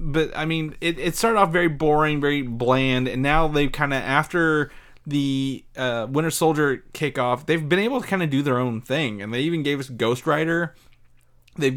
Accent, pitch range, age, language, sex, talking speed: American, 125-160 Hz, 30-49, English, male, 205 wpm